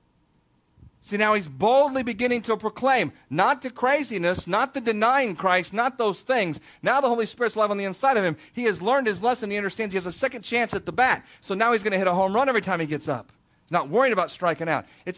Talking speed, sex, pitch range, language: 245 wpm, male, 180-245 Hz, English